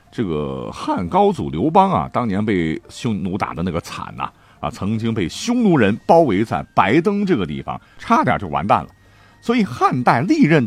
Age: 50-69